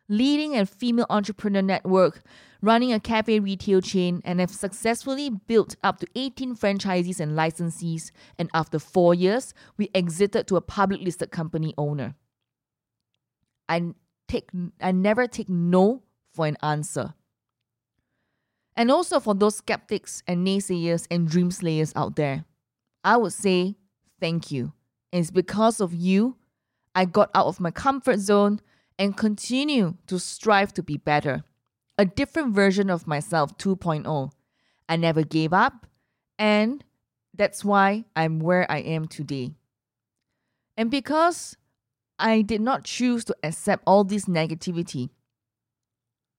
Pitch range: 145-205 Hz